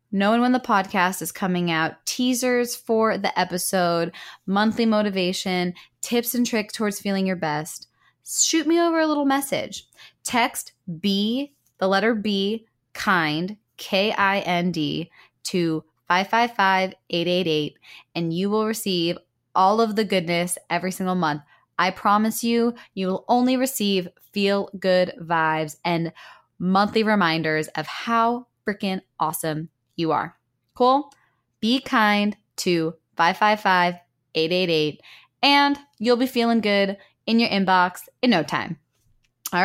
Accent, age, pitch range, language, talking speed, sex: American, 20-39, 170-230 Hz, English, 125 wpm, female